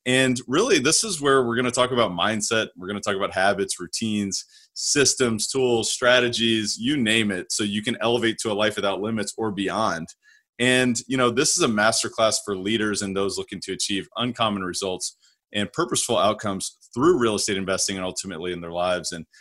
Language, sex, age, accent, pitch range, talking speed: English, male, 20-39, American, 100-125 Hz, 200 wpm